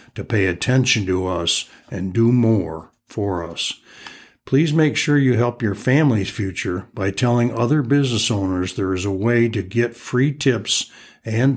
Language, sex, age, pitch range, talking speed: English, male, 60-79, 95-125 Hz, 165 wpm